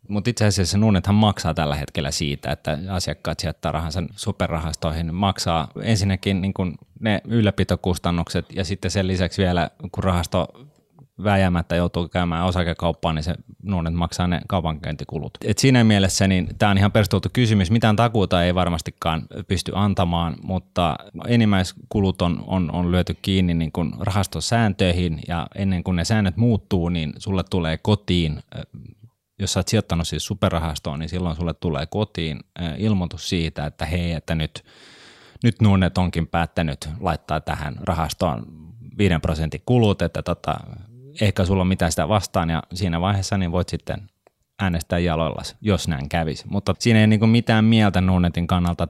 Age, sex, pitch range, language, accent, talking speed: 20-39, male, 85-100 Hz, Finnish, native, 150 wpm